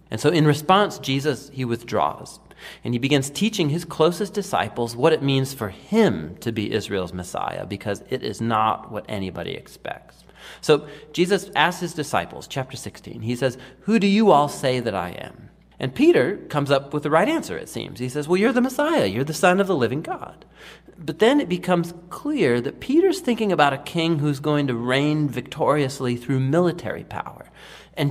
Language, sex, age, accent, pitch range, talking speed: English, male, 40-59, American, 125-180 Hz, 190 wpm